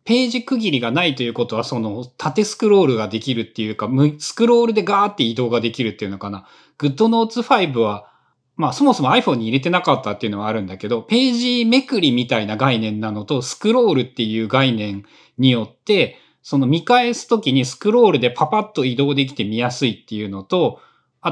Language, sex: Japanese, male